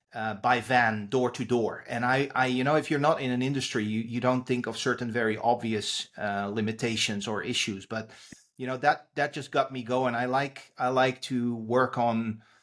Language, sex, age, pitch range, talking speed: English, male, 30-49, 115-130 Hz, 215 wpm